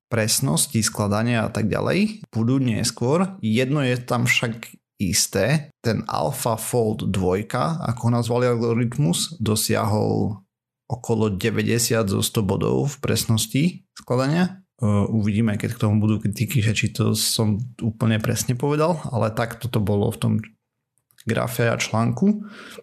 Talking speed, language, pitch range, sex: 130 wpm, Slovak, 110-130 Hz, male